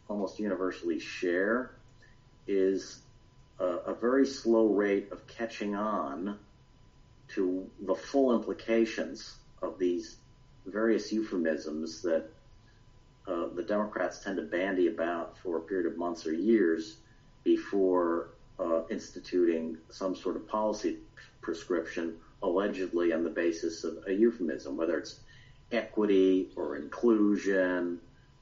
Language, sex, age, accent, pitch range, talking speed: English, male, 50-69, American, 95-125 Hz, 120 wpm